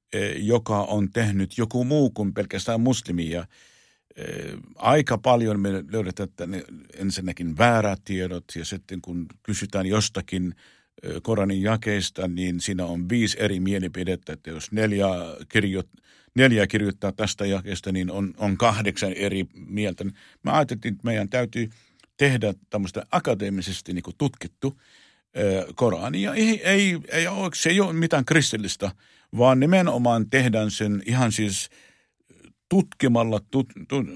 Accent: native